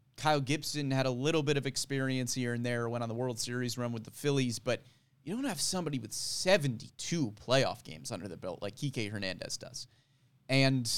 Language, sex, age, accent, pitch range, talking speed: English, male, 30-49, American, 125-150 Hz, 200 wpm